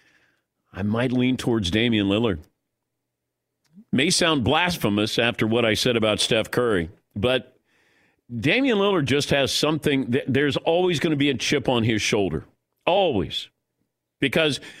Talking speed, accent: 140 wpm, American